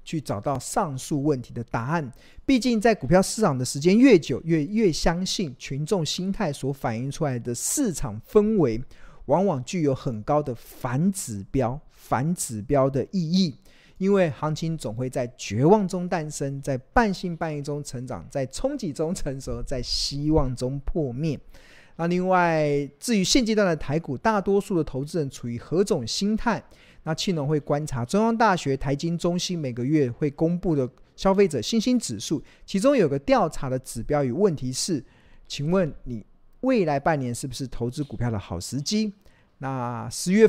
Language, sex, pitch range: Chinese, male, 130-185 Hz